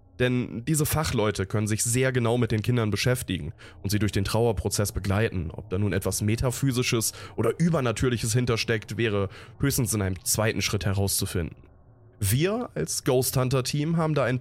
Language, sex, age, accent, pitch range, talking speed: German, male, 20-39, German, 100-130 Hz, 160 wpm